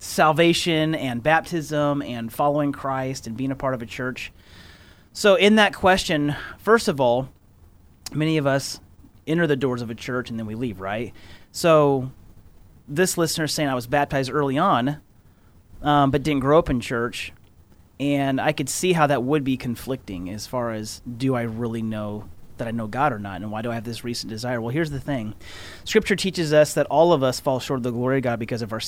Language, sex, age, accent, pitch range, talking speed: English, male, 30-49, American, 115-145 Hz, 210 wpm